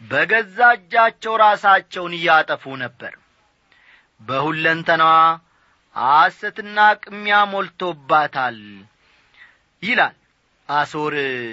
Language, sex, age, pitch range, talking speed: Amharic, male, 40-59, 160-215 Hz, 50 wpm